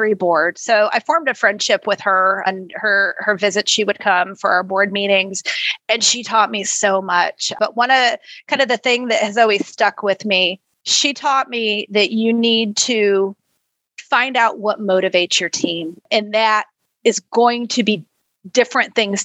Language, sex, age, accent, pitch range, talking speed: English, female, 30-49, American, 200-245 Hz, 185 wpm